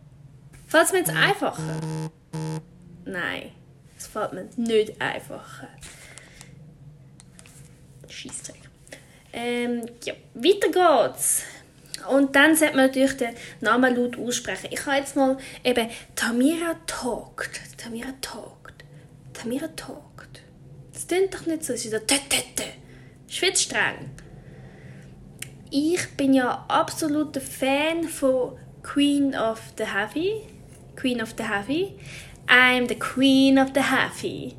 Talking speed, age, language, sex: 115 wpm, 10-29, German, female